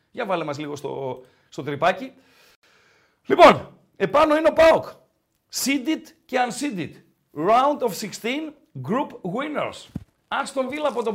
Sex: male